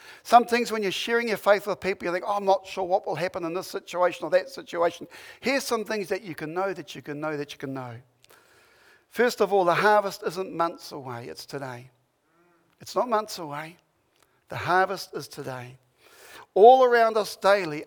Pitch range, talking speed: 155-210 Hz, 200 wpm